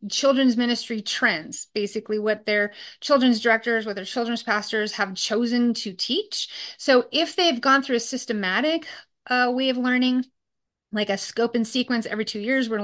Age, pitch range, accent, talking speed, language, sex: 30-49, 210-255 Hz, American, 170 wpm, English, female